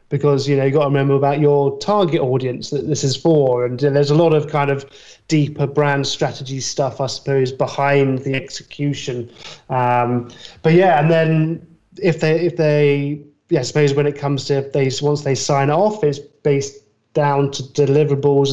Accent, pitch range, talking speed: British, 135-155 Hz, 190 wpm